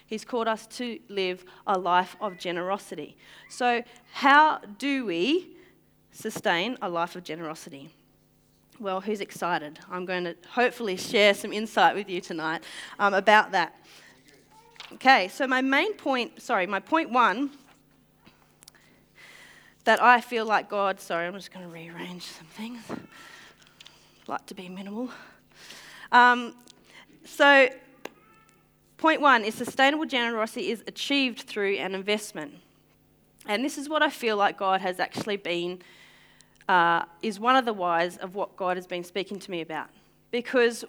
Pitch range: 185-250 Hz